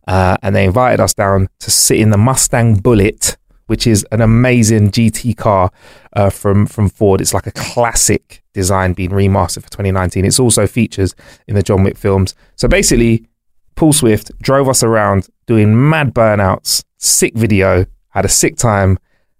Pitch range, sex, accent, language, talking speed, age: 100-130 Hz, male, British, English, 170 wpm, 20-39